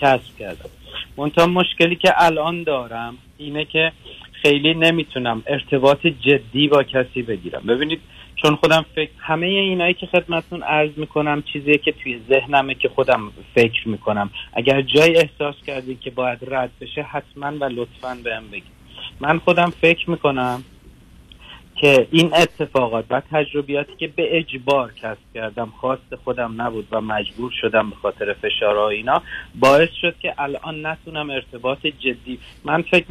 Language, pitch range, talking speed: Persian, 120-155 Hz, 140 wpm